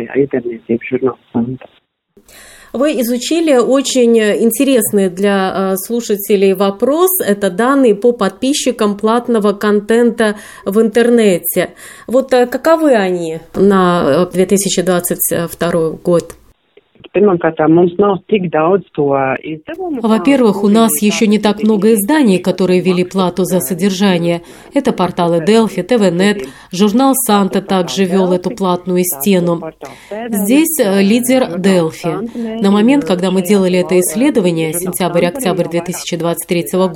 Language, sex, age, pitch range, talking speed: Russian, female, 30-49, 180-225 Hz, 95 wpm